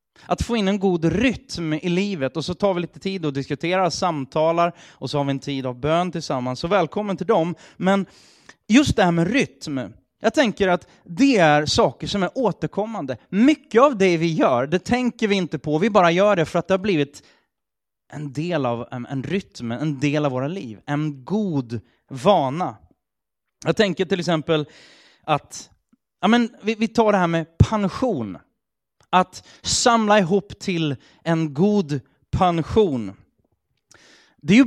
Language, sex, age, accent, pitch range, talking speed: Swedish, male, 30-49, native, 140-195 Hz, 175 wpm